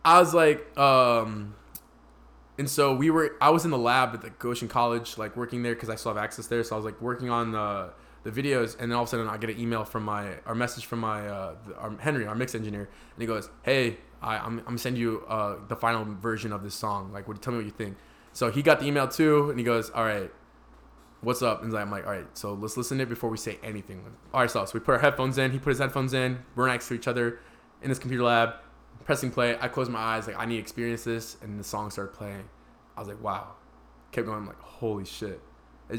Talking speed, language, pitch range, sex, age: 270 wpm, English, 105-130 Hz, male, 20-39